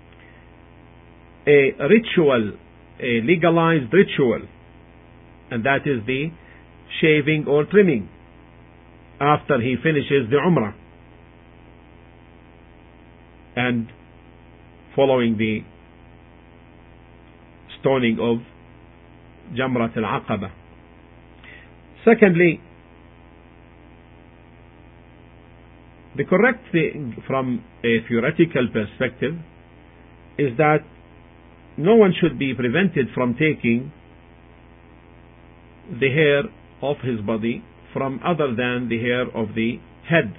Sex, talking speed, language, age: male, 80 wpm, English, 50-69